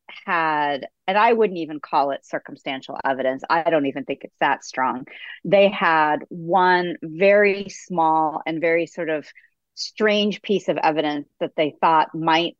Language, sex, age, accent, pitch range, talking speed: English, female, 40-59, American, 145-180 Hz, 155 wpm